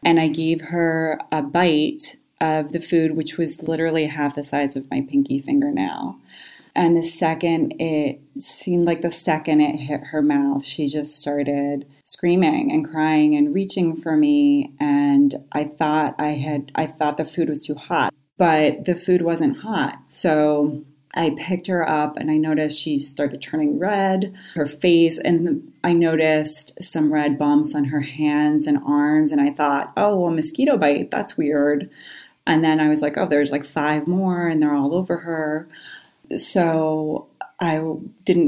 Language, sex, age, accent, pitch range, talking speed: English, female, 30-49, American, 150-175 Hz, 170 wpm